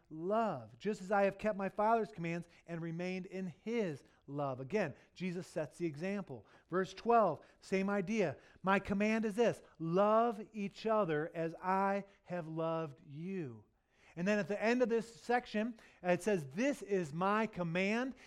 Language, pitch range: English, 140-220 Hz